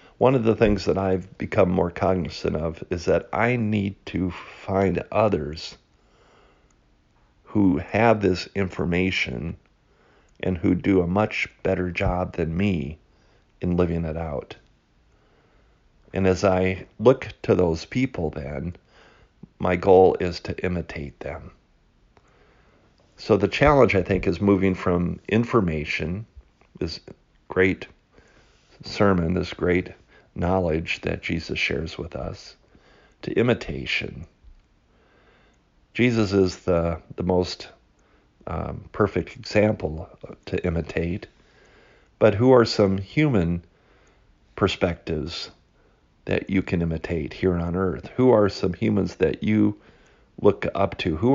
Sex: male